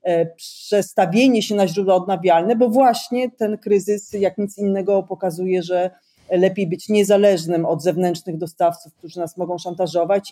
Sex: female